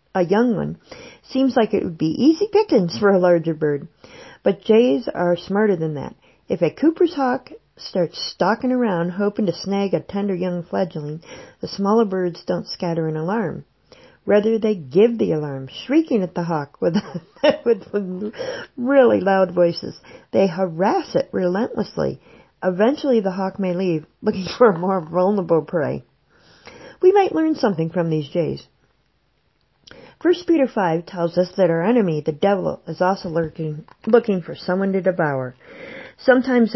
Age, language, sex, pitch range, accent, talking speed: 50-69, English, female, 170-230 Hz, American, 155 wpm